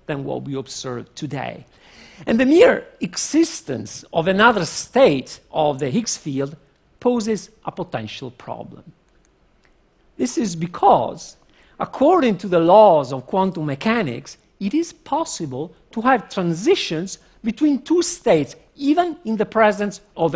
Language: Chinese